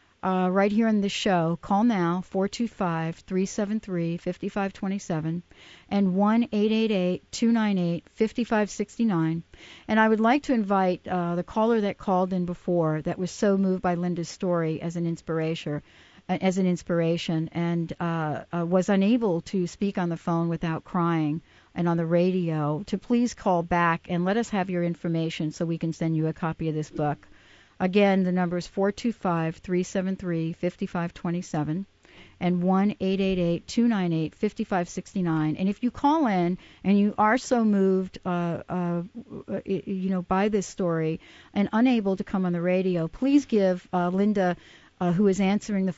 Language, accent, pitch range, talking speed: English, American, 170-200 Hz, 175 wpm